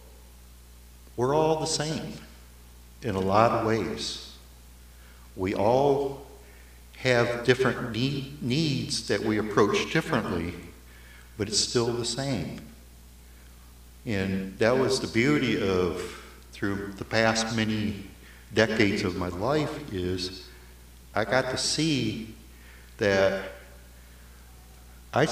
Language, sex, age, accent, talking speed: English, male, 60-79, American, 105 wpm